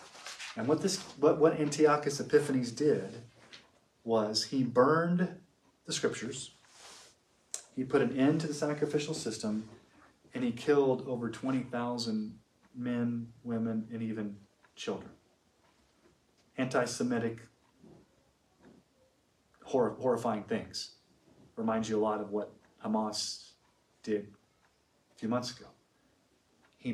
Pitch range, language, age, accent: 110-140 Hz, English, 40-59, American